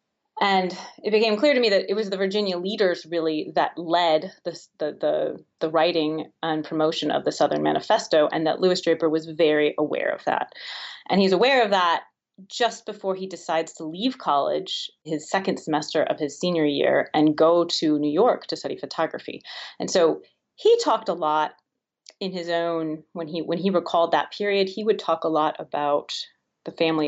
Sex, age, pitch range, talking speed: female, 30-49, 155-195 Hz, 190 wpm